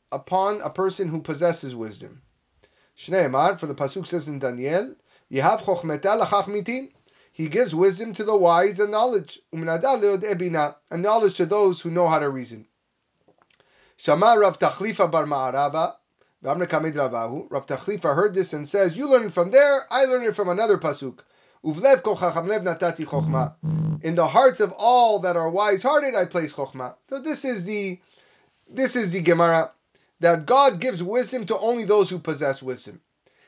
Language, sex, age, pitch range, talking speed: English, male, 30-49, 170-250 Hz, 165 wpm